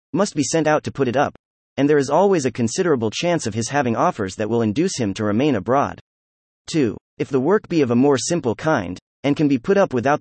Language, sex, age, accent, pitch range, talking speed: English, male, 30-49, American, 110-165 Hz, 245 wpm